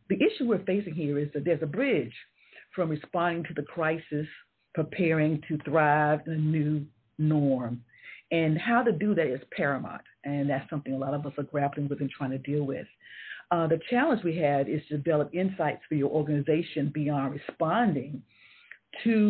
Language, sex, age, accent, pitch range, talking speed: English, female, 50-69, American, 145-170 Hz, 180 wpm